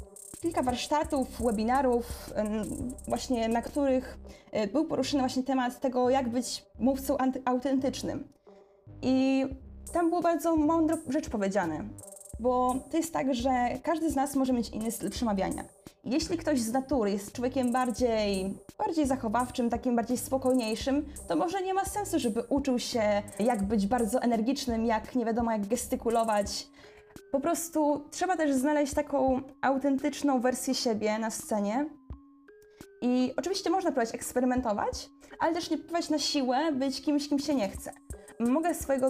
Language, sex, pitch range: Polish, female, 235-290 Hz